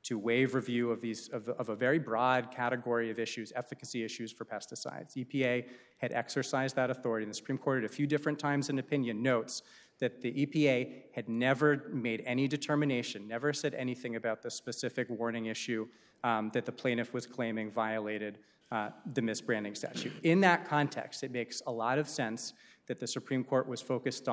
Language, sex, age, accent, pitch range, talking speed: English, male, 30-49, American, 115-140 Hz, 190 wpm